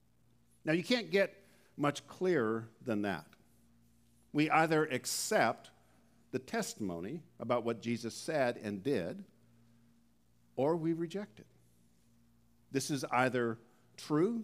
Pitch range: 110-165 Hz